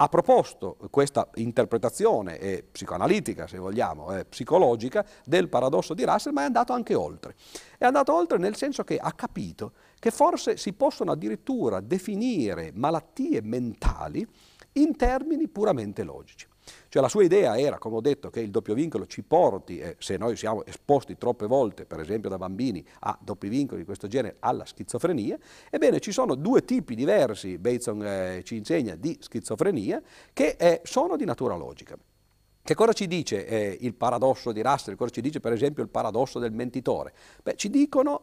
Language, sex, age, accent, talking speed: Italian, male, 50-69, native, 170 wpm